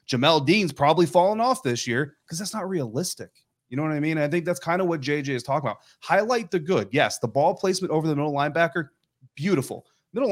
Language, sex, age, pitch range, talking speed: English, male, 30-49, 120-150 Hz, 225 wpm